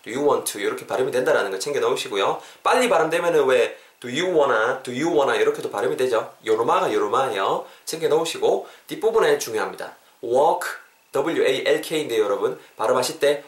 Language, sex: Korean, male